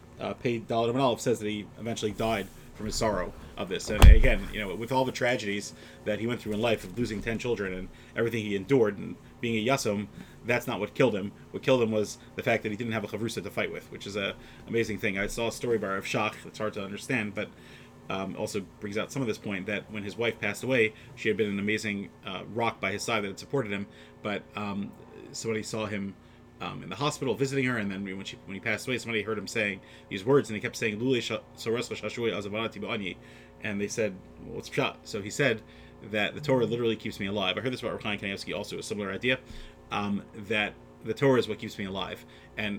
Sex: male